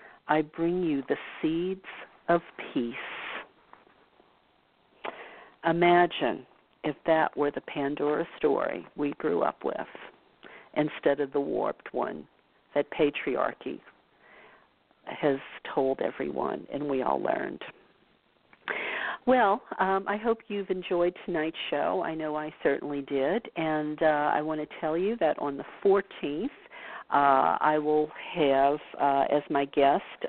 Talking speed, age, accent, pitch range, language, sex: 125 wpm, 50-69, American, 150-185 Hz, English, female